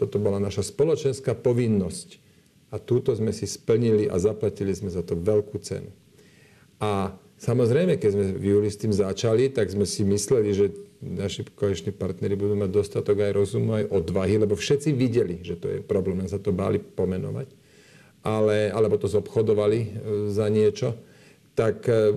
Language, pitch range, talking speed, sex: Slovak, 105-130 Hz, 160 wpm, male